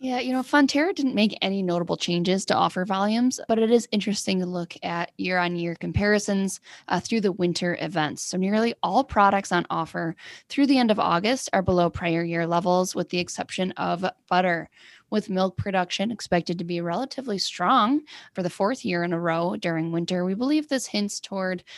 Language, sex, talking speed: English, female, 195 wpm